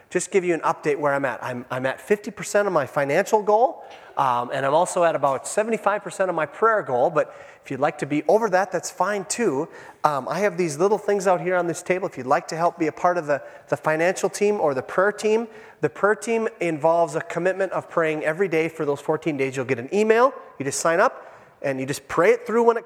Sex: male